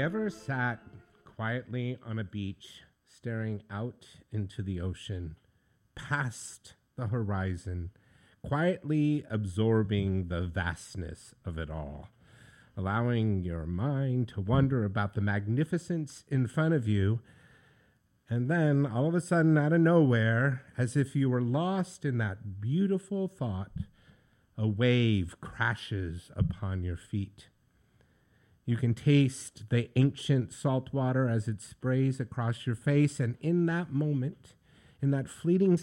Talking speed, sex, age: 130 wpm, male, 50-69